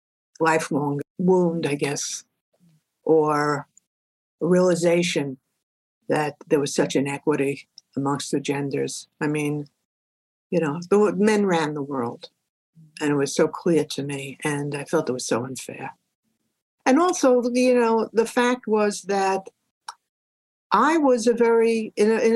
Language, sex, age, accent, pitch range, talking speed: English, female, 60-79, American, 150-215 Hz, 140 wpm